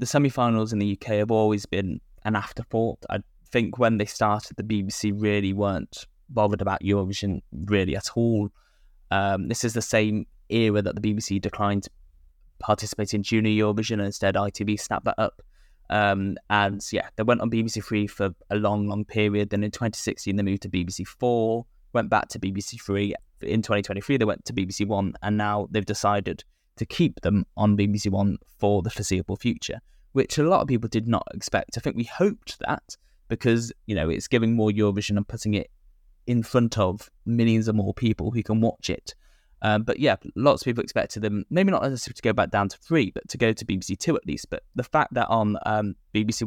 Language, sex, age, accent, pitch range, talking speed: English, male, 10-29, British, 100-115 Hz, 200 wpm